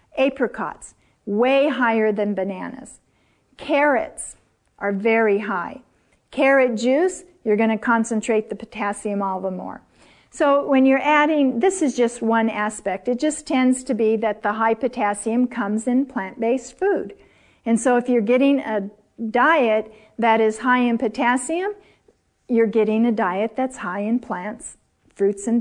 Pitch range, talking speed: 215-260 Hz, 150 wpm